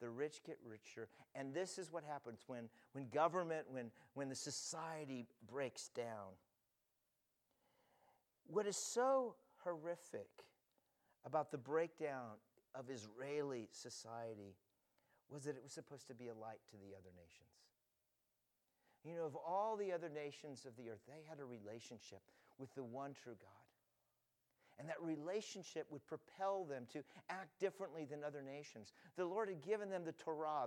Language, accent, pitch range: English, American, 120-165 Hz